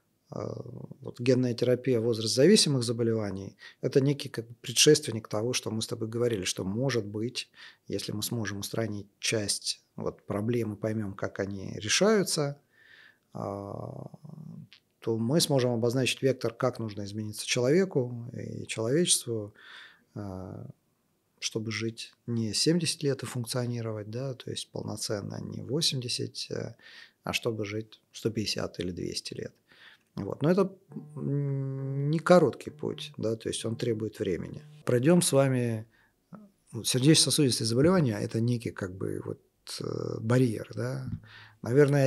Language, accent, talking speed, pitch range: Russian, native, 125 wpm, 110-135 Hz